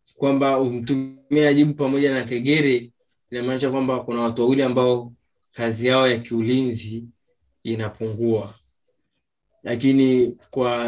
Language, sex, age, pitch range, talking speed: Swahili, male, 20-39, 115-145 Hz, 105 wpm